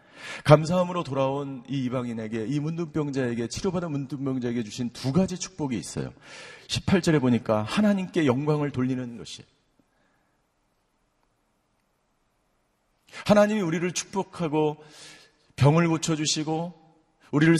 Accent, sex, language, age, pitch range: native, male, Korean, 40-59, 130-175 Hz